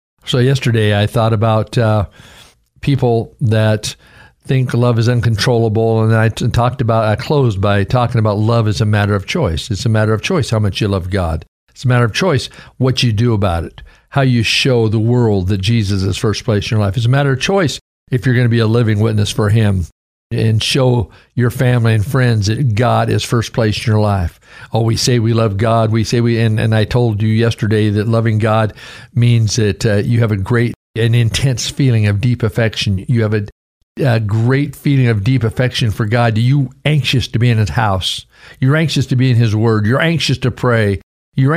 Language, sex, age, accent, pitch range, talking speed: English, male, 50-69, American, 105-125 Hz, 220 wpm